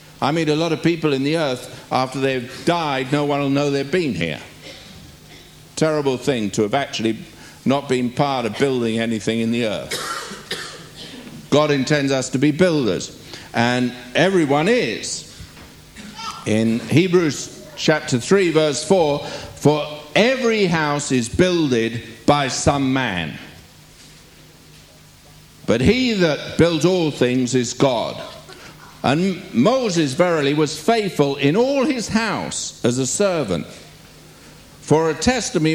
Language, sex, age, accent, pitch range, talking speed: English, male, 60-79, British, 130-170 Hz, 135 wpm